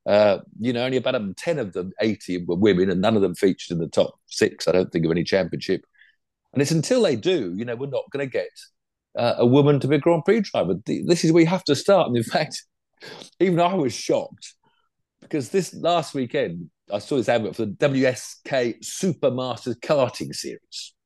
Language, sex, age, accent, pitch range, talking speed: English, male, 50-69, British, 115-180 Hz, 215 wpm